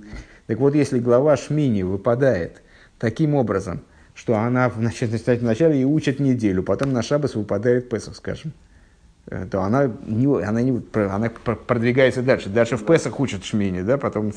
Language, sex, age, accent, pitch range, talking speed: Russian, male, 50-69, native, 100-125 Hz, 150 wpm